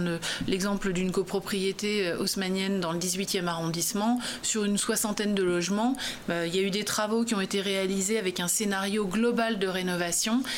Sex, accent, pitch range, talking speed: female, French, 185-220 Hz, 165 wpm